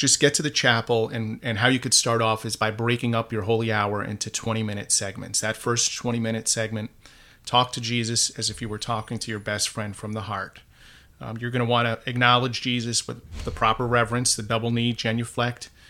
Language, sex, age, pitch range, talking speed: English, male, 40-59, 110-120 Hz, 215 wpm